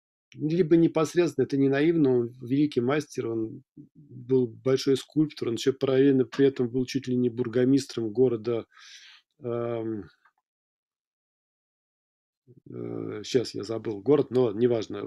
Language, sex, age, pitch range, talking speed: Russian, male, 40-59, 120-145 Hz, 120 wpm